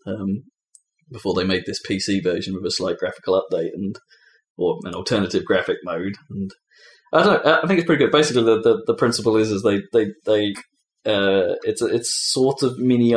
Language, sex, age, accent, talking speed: English, male, 20-39, British, 195 wpm